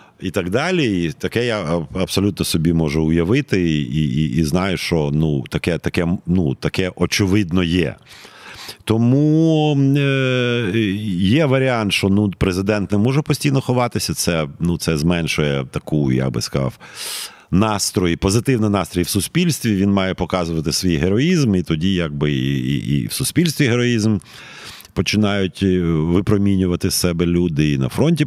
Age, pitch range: 40-59, 75-105 Hz